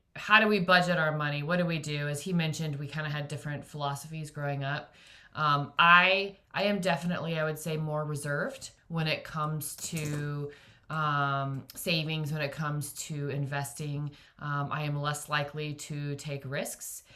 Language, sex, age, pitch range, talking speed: English, female, 20-39, 140-160 Hz, 175 wpm